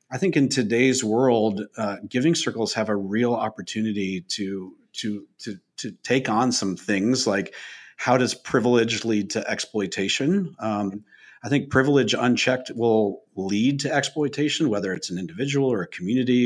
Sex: male